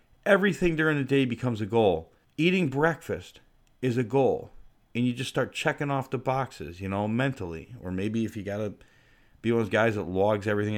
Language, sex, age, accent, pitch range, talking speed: English, male, 40-59, American, 95-125 Hz, 200 wpm